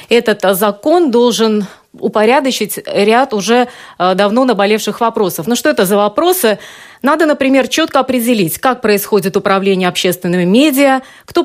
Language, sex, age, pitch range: Russian, female, 30-49, 200-270 Hz